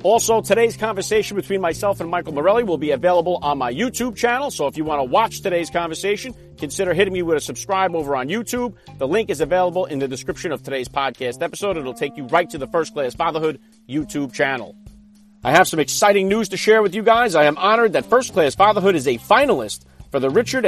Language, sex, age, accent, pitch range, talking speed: English, male, 40-59, American, 155-220 Hz, 225 wpm